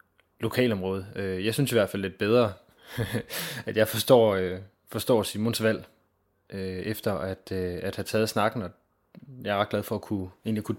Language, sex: Danish, male